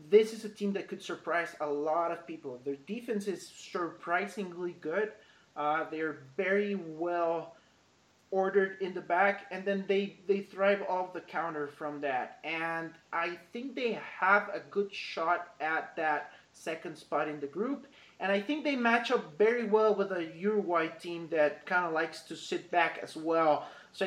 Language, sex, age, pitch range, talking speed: English, male, 30-49, 165-200 Hz, 175 wpm